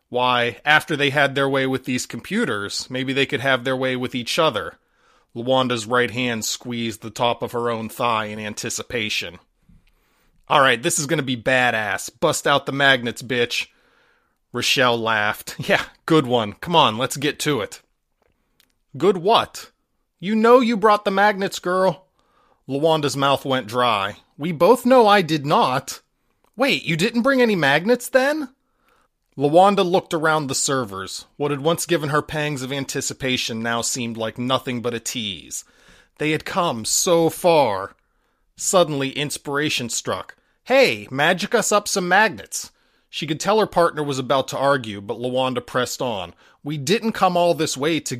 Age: 30-49